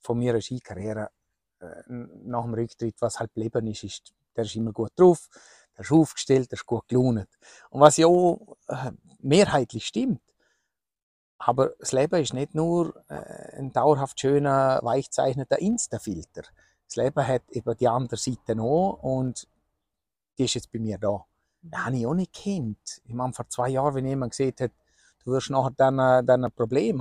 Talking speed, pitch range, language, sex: 170 wpm, 115-140 Hz, German, male